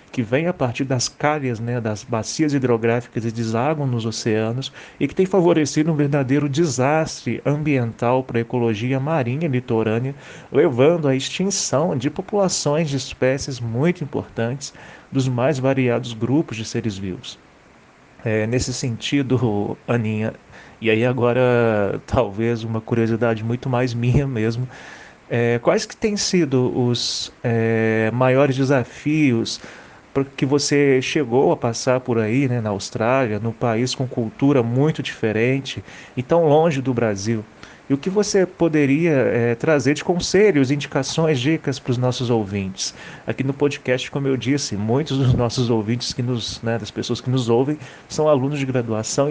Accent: Brazilian